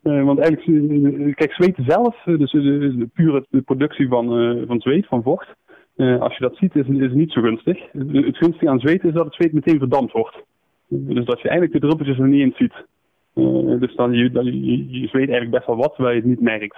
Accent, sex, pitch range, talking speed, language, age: Dutch, male, 120-145 Hz, 240 wpm, Dutch, 20-39